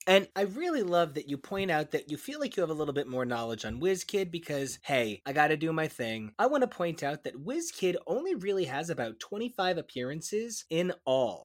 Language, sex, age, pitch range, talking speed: English, male, 20-39, 130-185 Hz, 225 wpm